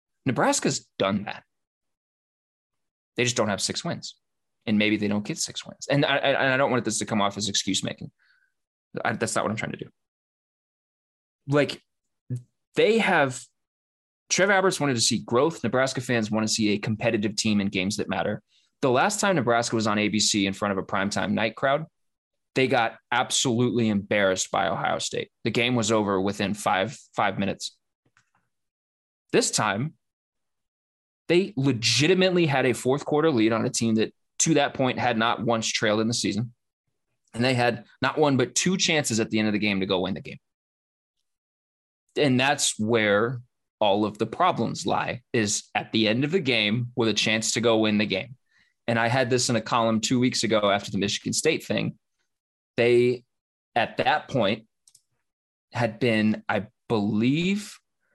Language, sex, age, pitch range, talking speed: English, male, 20-39, 105-130 Hz, 180 wpm